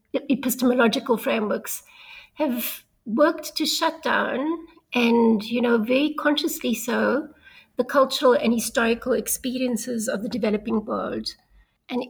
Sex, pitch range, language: female, 225-270 Hz, English